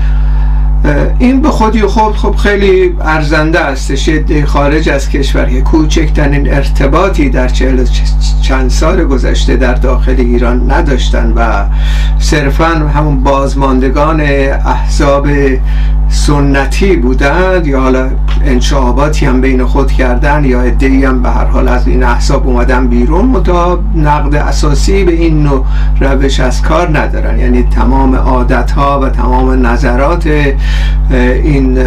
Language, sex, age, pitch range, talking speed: Persian, male, 60-79, 125-160 Hz, 120 wpm